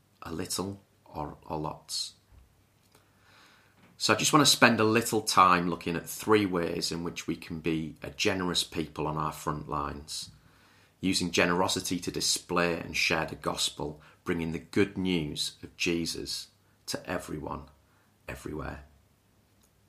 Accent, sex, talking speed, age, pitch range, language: British, male, 140 wpm, 30-49, 85-105 Hz, English